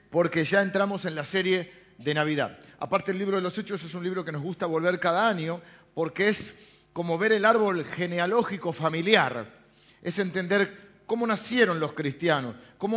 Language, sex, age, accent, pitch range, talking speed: Spanish, male, 50-69, Argentinian, 155-200 Hz, 175 wpm